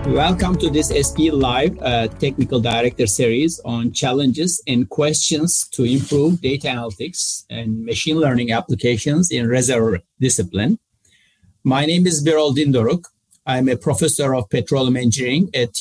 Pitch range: 120-155 Hz